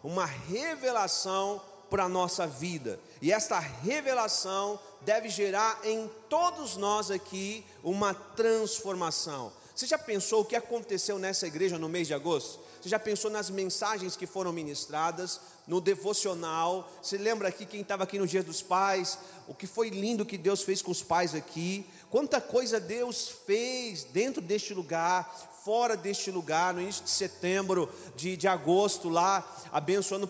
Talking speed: 155 wpm